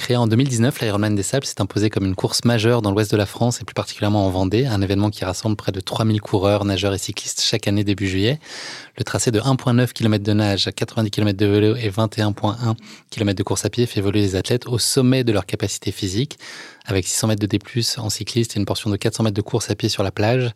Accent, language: French, French